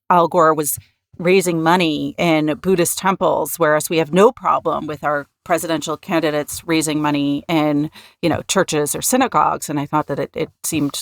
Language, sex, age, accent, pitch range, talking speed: English, female, 40-59, American, 155-195 Hz, 175 wpm